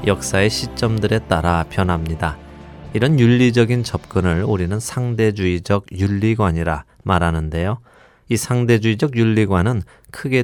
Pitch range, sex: 90-115 Hz, male